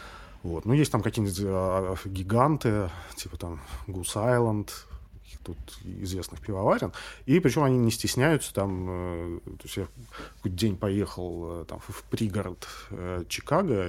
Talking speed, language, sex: 125 wpm, Russian, male